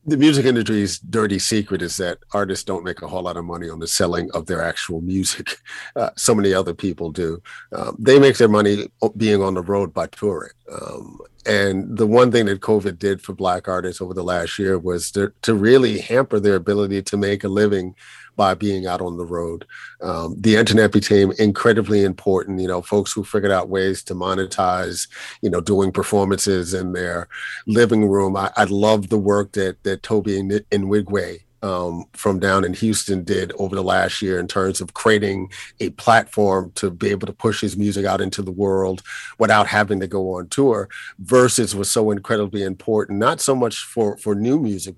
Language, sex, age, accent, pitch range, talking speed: English, male, 50-69, American, 95-105 Hz, 200 wpm